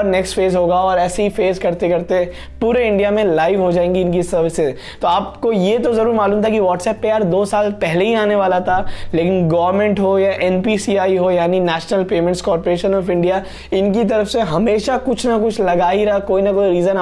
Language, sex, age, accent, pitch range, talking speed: Hindi, male, 20-39, native, 175-205 Hz, 185 wpm